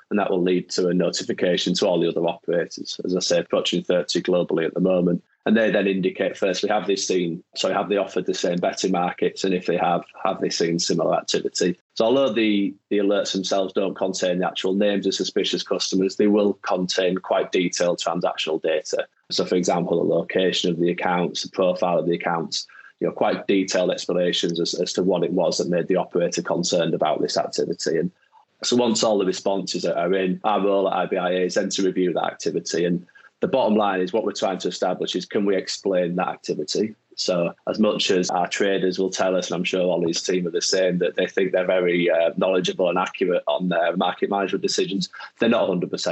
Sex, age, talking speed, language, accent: male, 20-39, 215 wpm, English, British